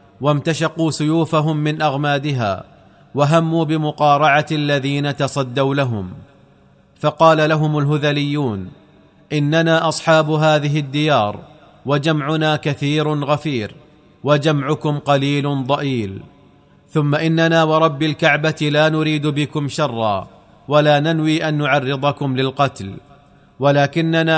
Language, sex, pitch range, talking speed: Arabic, male, 140-155 Hz, 90 wpm